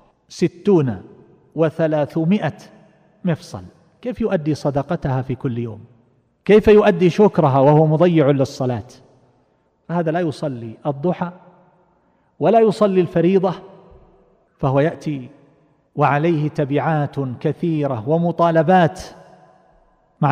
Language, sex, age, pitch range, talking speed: Arabic, male, 40-59, 140-175 Hz, 85 wpm